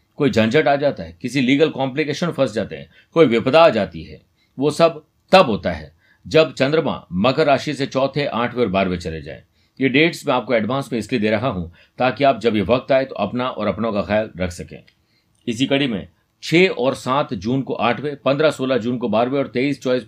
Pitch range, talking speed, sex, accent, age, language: 110-145 Hz, 220 wpm, male, native, 50-69, Hindi